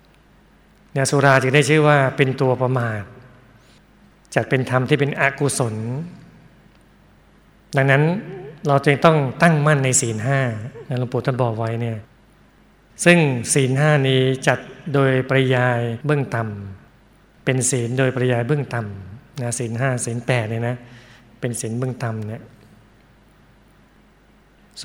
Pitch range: 125-145 Hz